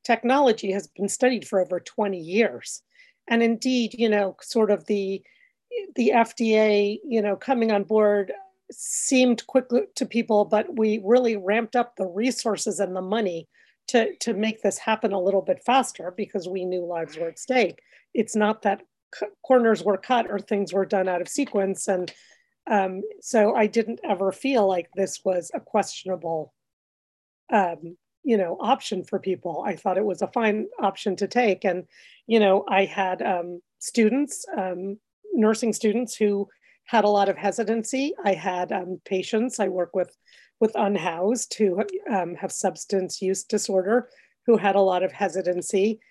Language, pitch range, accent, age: English, 190-230 Hz, American, 40-59